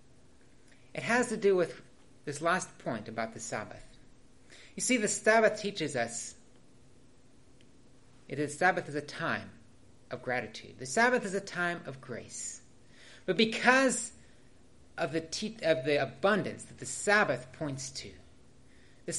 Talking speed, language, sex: 145 wpm, English, male